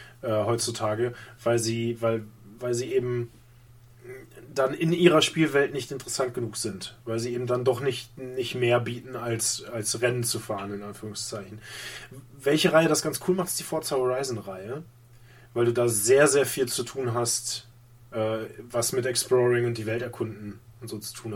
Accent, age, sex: German, 20-39, male